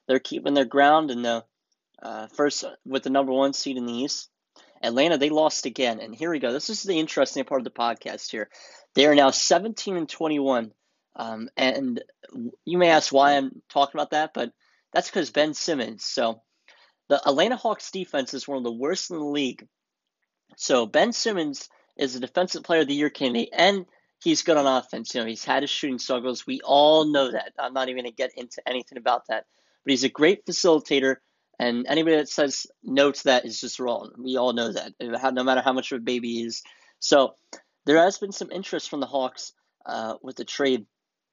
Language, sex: English, male